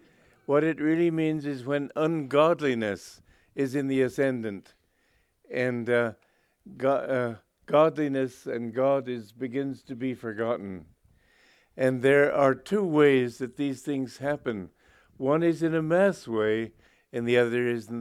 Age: 60-79